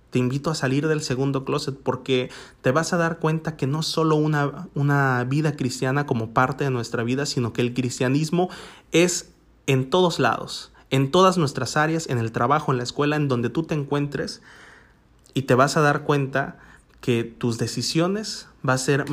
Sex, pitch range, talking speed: male, 125-155 Hz, 190 wpm